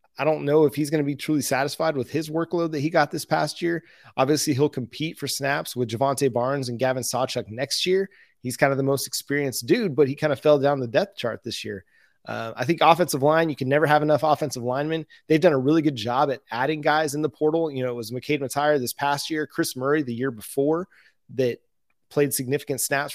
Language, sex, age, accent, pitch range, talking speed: English, male, 30-49, American, 130-155 Hz, 235 wpm